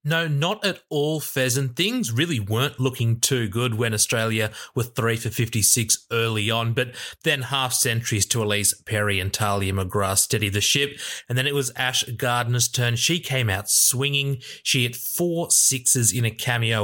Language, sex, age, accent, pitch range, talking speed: English, male, 20-39, Australian, 105-135 Hz, 180 wpm